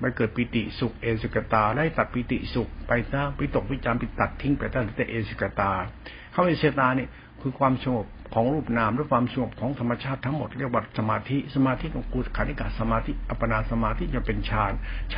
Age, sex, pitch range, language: 70-89, male, 115-135 Hz, Thai